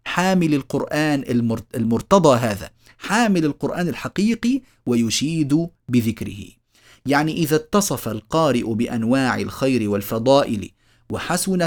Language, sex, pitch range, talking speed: Arabic, male, 115-170 Hz, 85 wpm